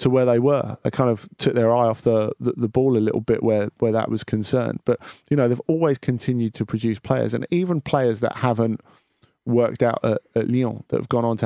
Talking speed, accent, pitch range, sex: 245 wpm, British, 110-125 Hz, male